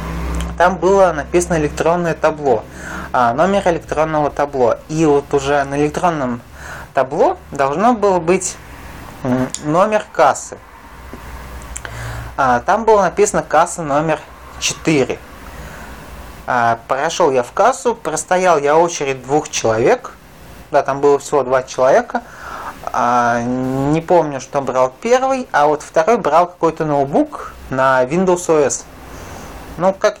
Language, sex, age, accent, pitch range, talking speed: Russian, male, 20-39, native, 130-165 Hz, 110 wpm